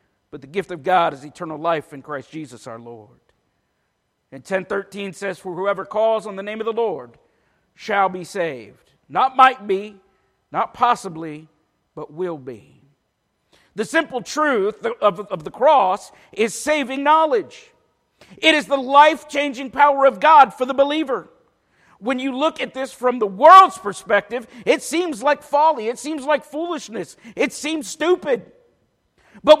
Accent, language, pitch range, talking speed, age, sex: American, English, 195-300 Hz, 155 wpm, 50-69, male